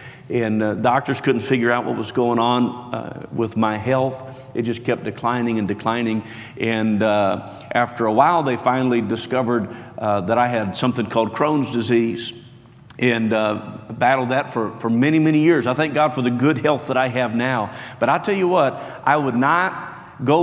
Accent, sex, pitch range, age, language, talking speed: American, male, 115-155 Hz, 50-69, English, 190 wpm